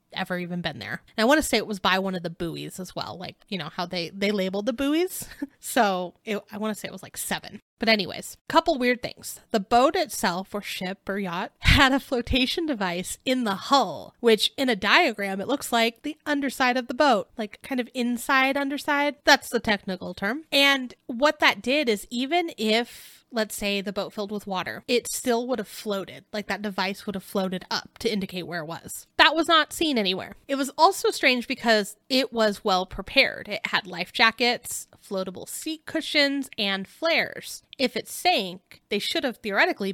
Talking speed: 205 wpm